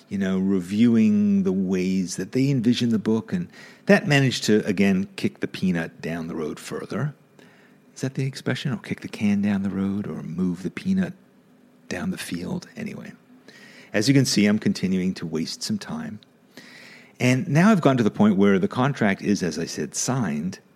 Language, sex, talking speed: English, male, 190 wpm